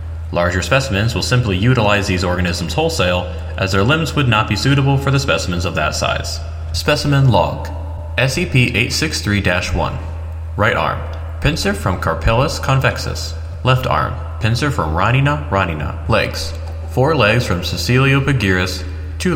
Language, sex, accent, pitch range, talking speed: English, male, American, 80-110 Hz, 135 wpm